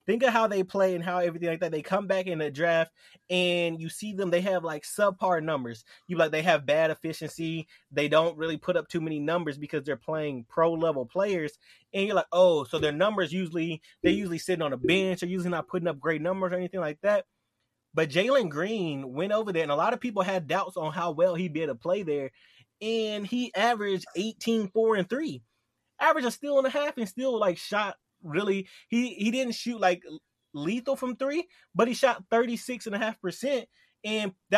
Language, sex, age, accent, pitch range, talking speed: English, male, 20-39, American, 160-210 Hz, 215 wpm